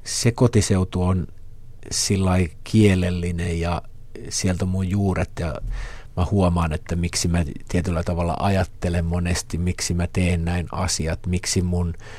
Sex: male